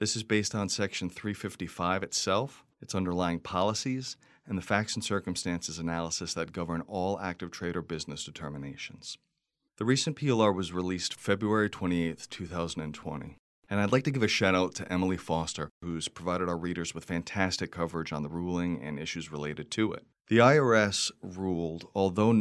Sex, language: male, English